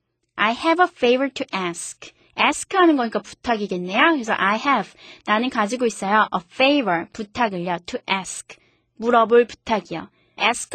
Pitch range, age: 205-290 Hz, 20-39